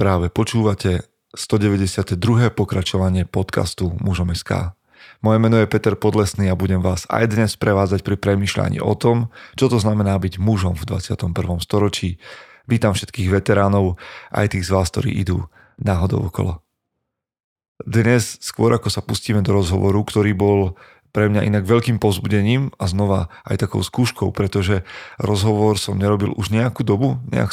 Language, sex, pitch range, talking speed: Slovak, male, 95-110 Hz, 150 wpm